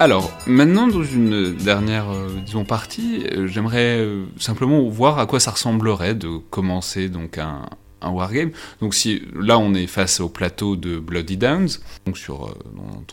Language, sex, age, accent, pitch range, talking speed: French, male, 30-49, French, 85-115 Hz, 165 wpm